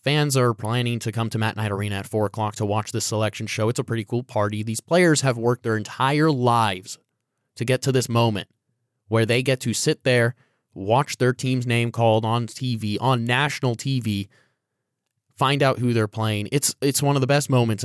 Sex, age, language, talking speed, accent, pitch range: male, 20-39, English, 210 wpm, American, 110-135 Hz